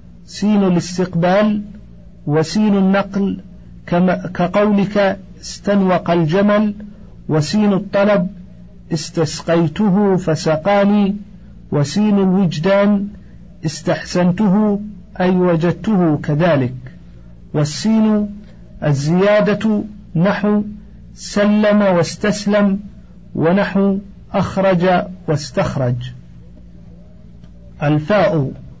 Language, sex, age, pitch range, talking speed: Arabic, male, 50-69, 155-205 Hz, 55 wpm